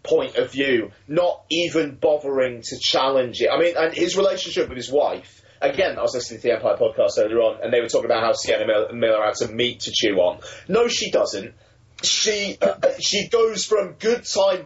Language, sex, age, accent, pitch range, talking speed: English, male, 30-49, British, 125-185 Hz, 205 wpm